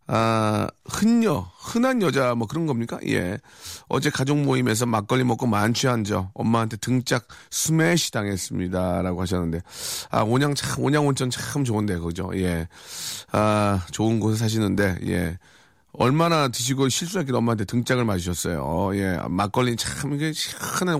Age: 40-59